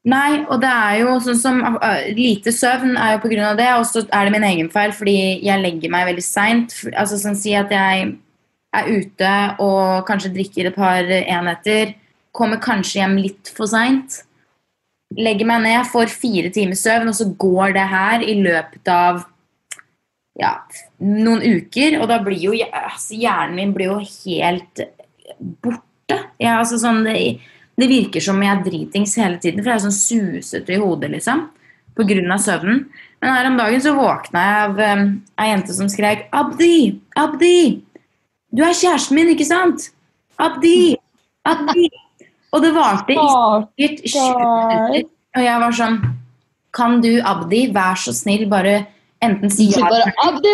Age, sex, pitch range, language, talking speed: 20-39, female, 195-255 Hz, English, 175 wpm